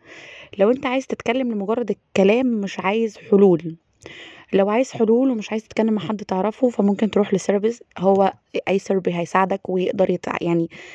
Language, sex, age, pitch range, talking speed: Arabic, female, 20-39, 185-225 Hz, 150 wpm